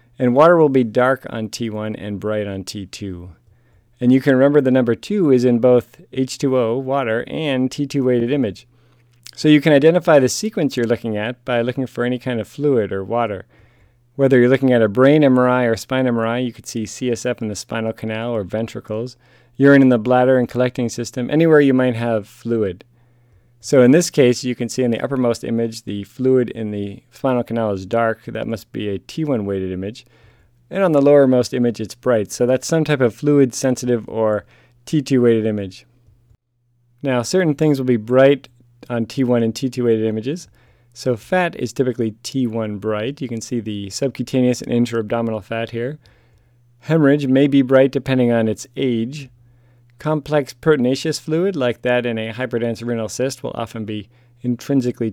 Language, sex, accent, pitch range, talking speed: English, male, American, 115-130 Hz, 185 wpm